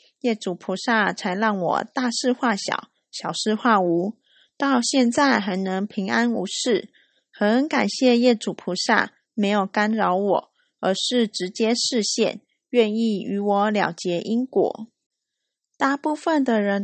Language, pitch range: Chinese, 200-255 Hz